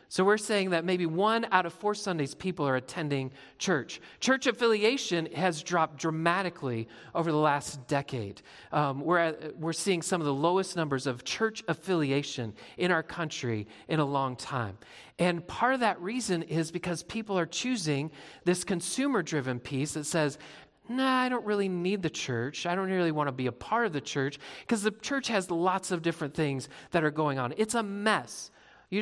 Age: 40-59